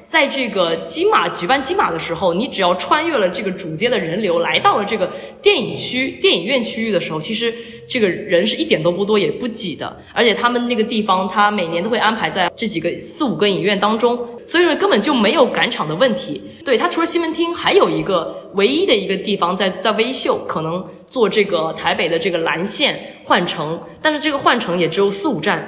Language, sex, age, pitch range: Chinese, female, 20-39, 190-270 Hz